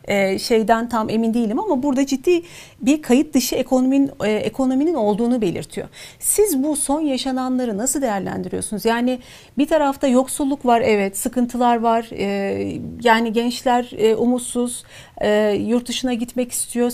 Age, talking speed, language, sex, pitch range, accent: 40-59, 140 wpm, Turkish, female, 220-260 Hz, native